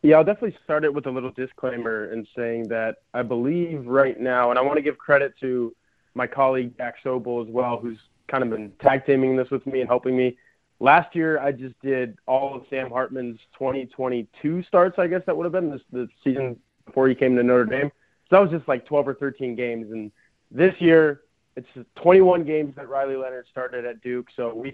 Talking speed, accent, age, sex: 215 wpm, American, 20-39, male